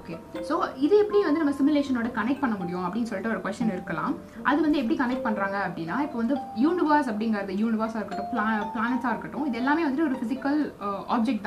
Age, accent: 20-39, native